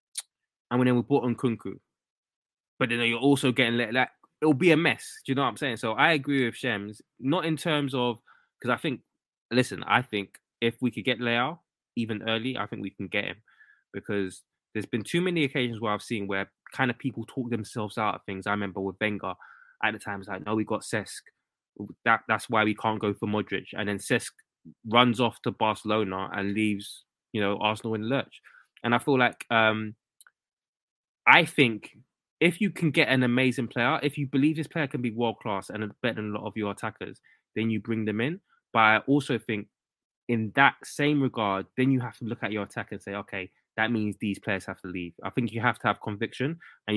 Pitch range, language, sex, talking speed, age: 105-125 Hz, English, male, 225 wpm, 20-39